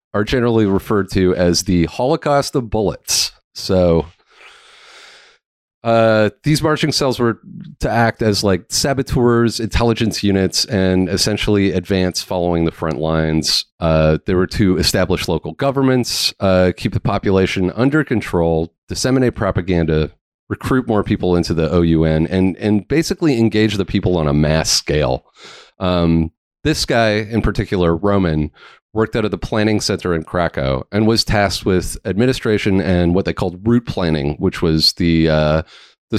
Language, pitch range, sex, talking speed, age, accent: English, 85-115 Hz, male, 150 wpm, 30-49, American